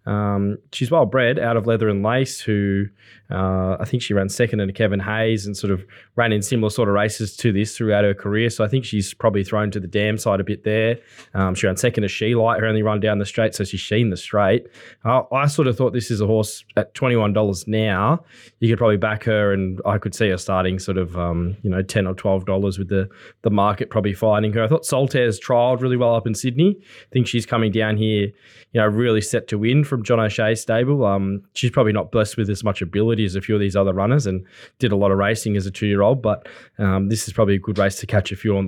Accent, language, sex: Australian, English, male